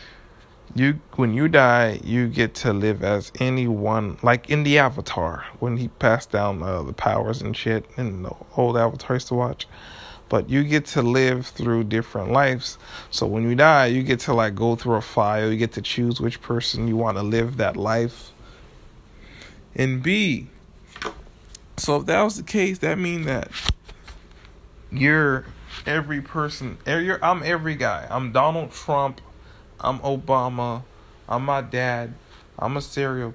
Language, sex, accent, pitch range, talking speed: English, male, American, 110-140 Hz, 160 wpm